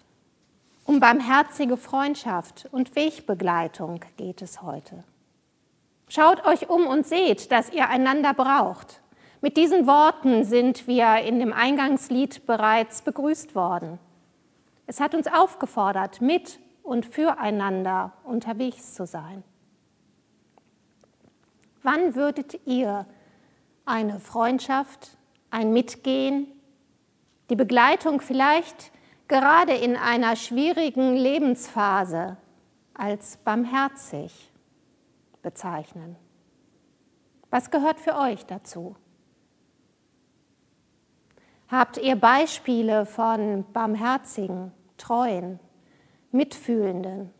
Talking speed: 85 wpm